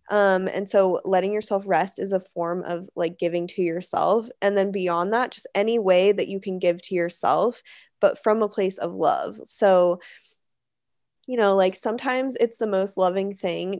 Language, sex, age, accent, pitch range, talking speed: English, female, 20-39, American, 185-220 Hz, 185 wpm